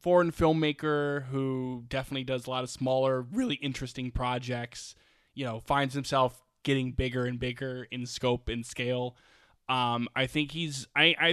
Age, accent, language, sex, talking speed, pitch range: 20-39, American, English, male, 160 wpm, 120-140 Hz